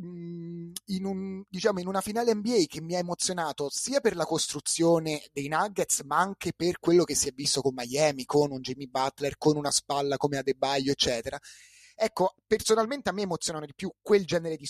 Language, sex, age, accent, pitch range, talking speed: Italian, male, 30-49, native, 140-180 Hz, 195 wpm